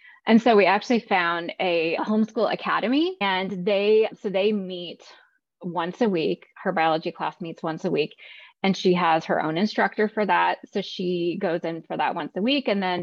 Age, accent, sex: 20-39, American, female